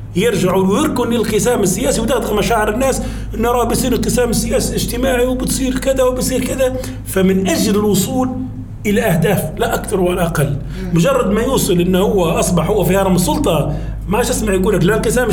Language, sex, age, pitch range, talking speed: Arabic, male, 40-59, 145-205 Hz, 155 wpm